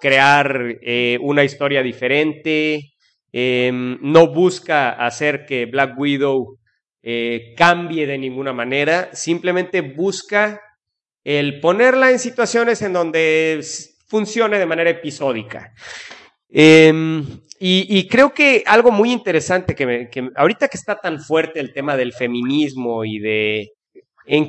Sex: male